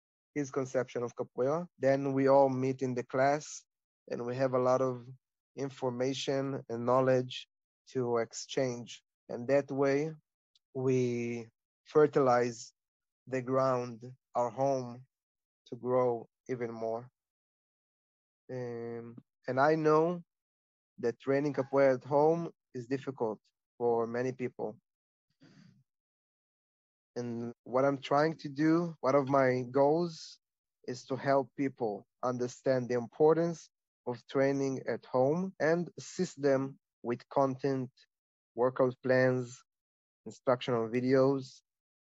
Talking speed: 110 wpm